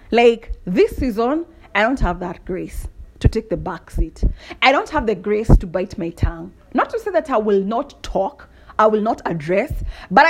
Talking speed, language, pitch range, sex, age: 205 wpm, English, 190-290 Hz, female, 30-49